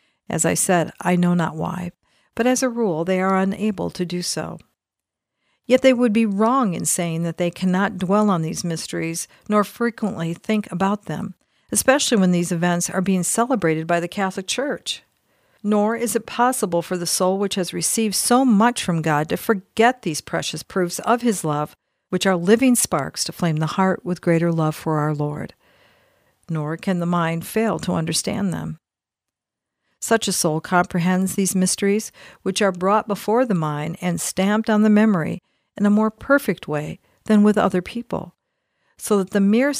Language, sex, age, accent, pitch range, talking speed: English, female, 50-69, American, 170-215 Hz, 180 wpm